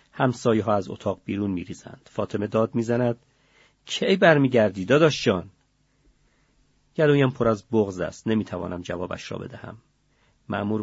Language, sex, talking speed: Persian, male, 125 wpm